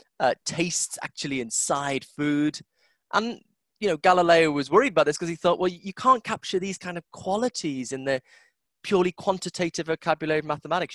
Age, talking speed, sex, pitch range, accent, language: 30-49, 170 wpm, male, 135-180 Hz, British, English